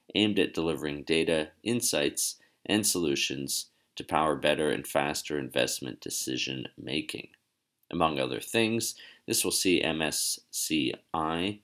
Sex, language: male, English